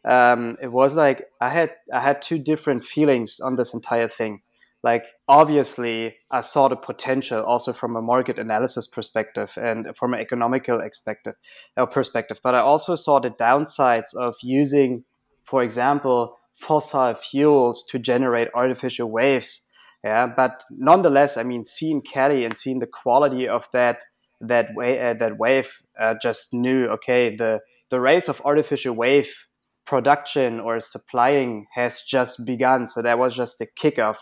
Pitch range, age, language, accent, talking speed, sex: 120-145 Hz, 20-39, English, German, 160 wpm, male